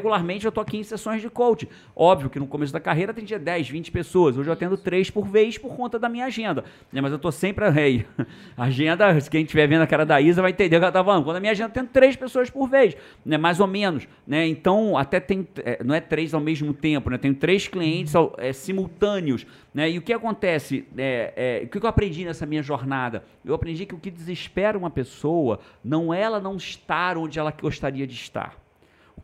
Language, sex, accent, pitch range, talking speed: Portuguese, male, Brazilian, 150-200 Hz, 240 wpm